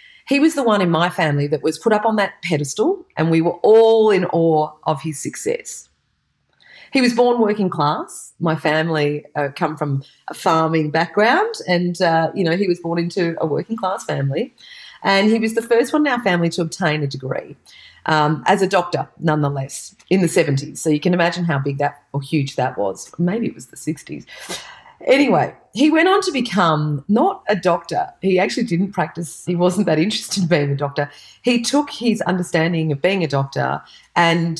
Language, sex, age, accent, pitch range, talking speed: English, female, 40-59, Australian, 150-195 Hz, 200 wpm